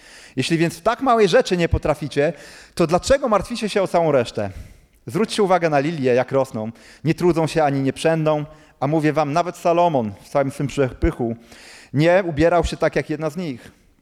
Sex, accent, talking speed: male, native, 185 wpm